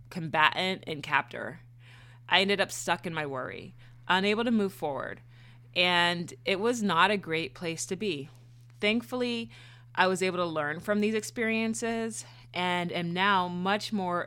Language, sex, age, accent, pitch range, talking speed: English, female, 30-49, American, 145-195 Hz, 155 wpm